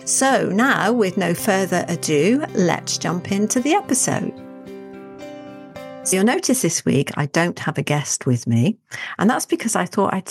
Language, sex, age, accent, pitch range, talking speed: English, female, 40-59, British, 145-210 Hz, 170 wpm